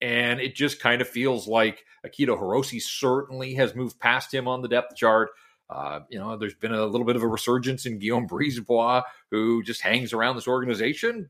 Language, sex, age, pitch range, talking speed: English, male, 40-59, 125-170 Hz, 200 wpm